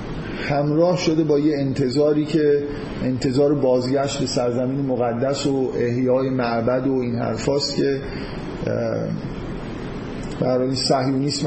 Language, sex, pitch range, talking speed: Persian, male, 125-150 Hz, 105 wpm